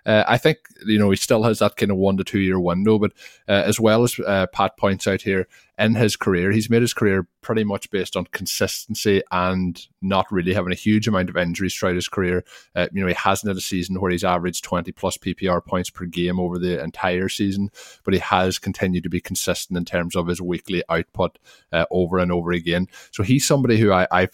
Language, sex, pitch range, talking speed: English, male, 90-100 Hz, 230 wpm